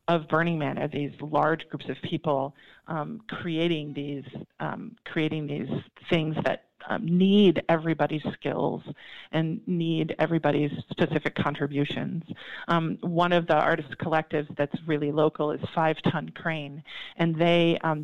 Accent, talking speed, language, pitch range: American, 140 wpm, English, 155-175 Hz